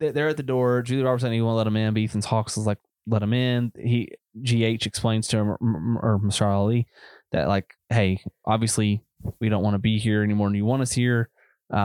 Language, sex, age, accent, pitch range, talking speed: English, male, 20-39, American, 105-120 Hz, 220 wpm